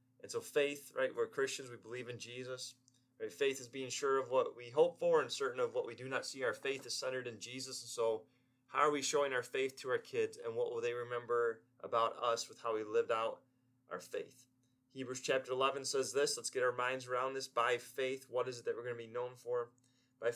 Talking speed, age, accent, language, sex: 240 wpm, 30-49, American, English, male